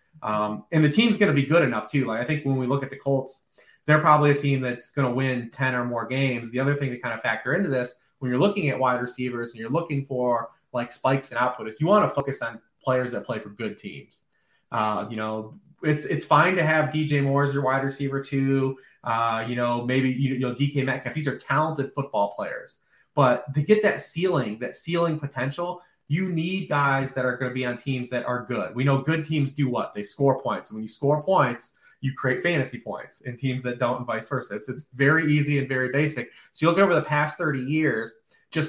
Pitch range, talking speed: 125-150 Hz, 245 wpm